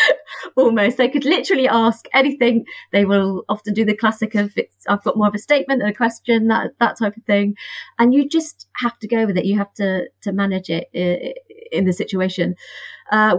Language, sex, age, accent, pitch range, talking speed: English, female, 30-49, British, 180-230 Hz, 205 wpm